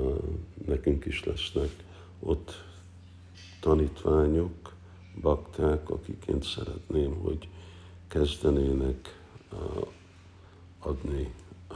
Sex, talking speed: male, 55 wpm